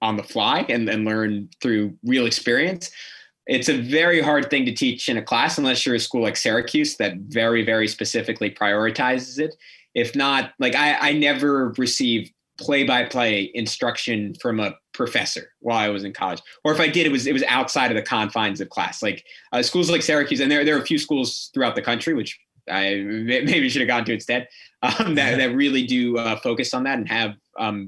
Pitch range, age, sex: 110-145 Hz, 20-39, male